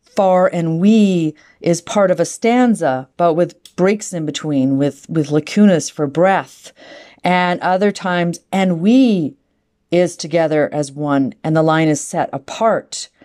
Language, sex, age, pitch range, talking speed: English, female, 40-59, 155-185 Hz, 150 wpm